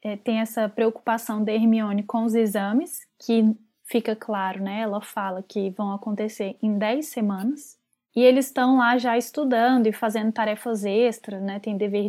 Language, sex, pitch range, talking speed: Portuguese, female, 215-255 Hz, 165 wpm